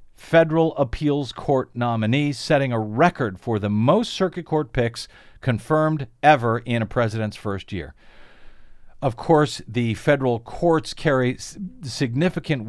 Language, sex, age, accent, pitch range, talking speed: English, male, 50-69, American, 105-145 Hz, 130 wpm